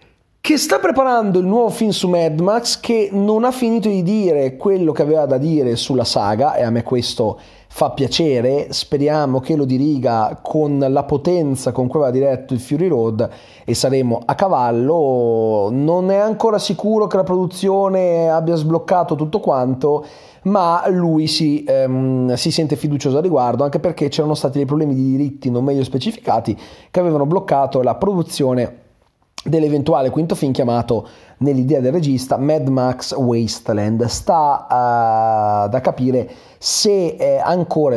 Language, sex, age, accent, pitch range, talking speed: Italian, male, 30-49, native, 120-175 Hz, 155 wpm